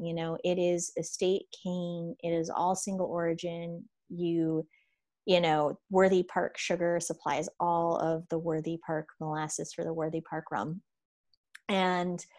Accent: American